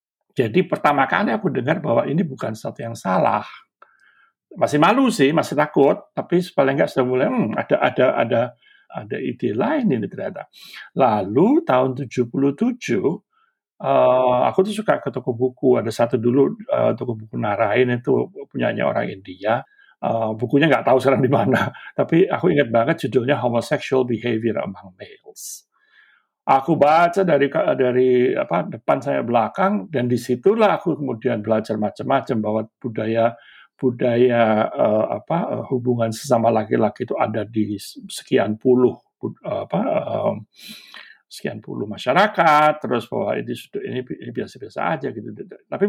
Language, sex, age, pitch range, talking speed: Indonesian, male, 60-79, 120-175 Hz, 140 wpm